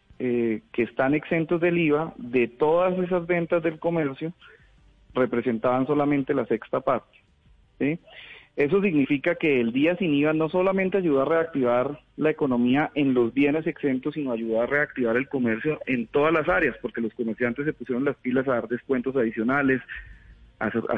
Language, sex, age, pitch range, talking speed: Spanish, male, 40-59, 125-155 Hz, 165 wpm